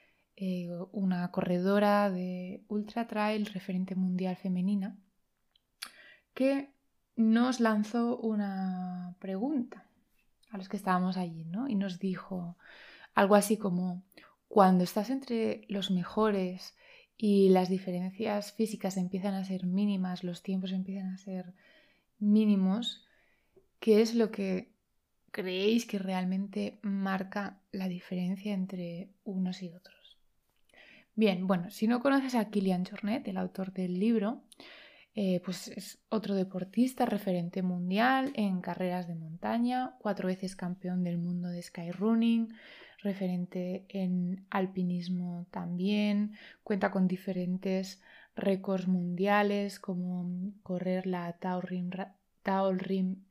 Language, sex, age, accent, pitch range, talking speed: Spanish, female, 20-39, Spanish, 185-215 Hz, 115 wpm